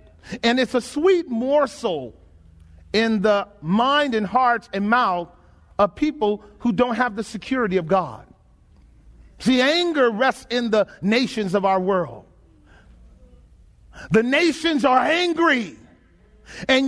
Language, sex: English, male